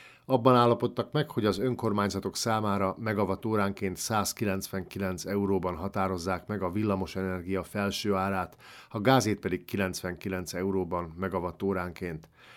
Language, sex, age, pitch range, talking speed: Hungarian, male, 50-69, 95-120 Hz, 105 wpm